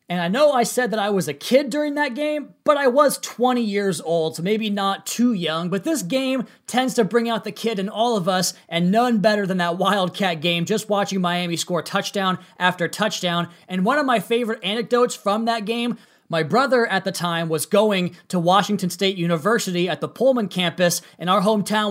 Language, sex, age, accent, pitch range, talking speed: English, male, 20-39, American, 175-230 Hz, 215 wpm